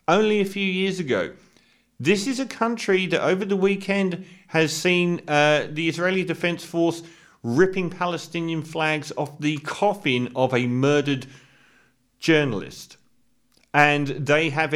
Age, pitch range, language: 40-59, 135-180 Hz, English